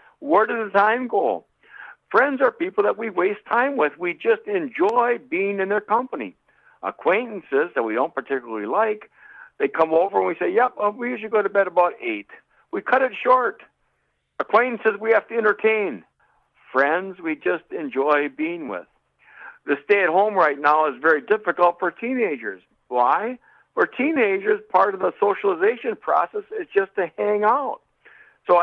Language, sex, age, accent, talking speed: English, male, 60-79, American, 165 wpm